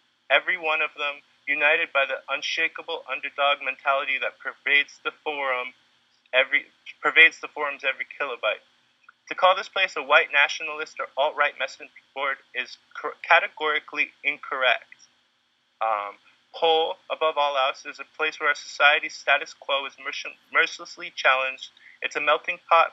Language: English